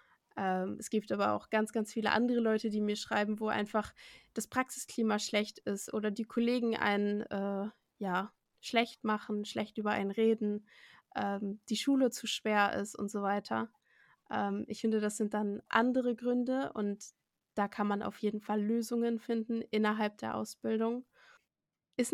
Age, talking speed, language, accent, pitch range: 20-39, 165 wpm, German, German, 205-235 Hz